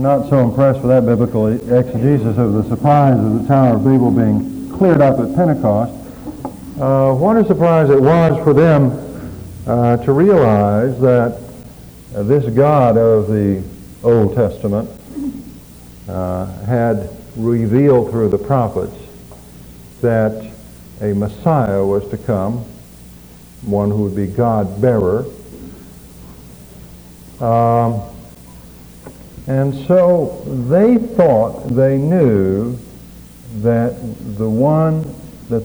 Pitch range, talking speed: 100-130 Hz, 115 wpm